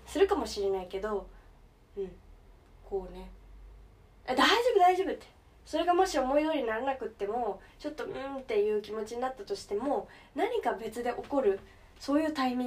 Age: 20-39